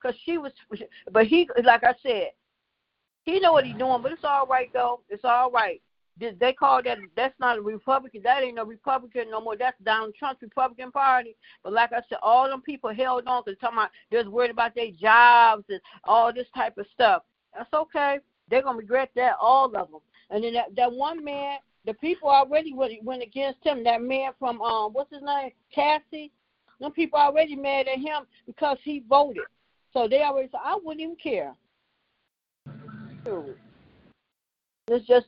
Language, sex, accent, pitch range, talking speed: English, female, American, 235-295 Hz, 190 wpm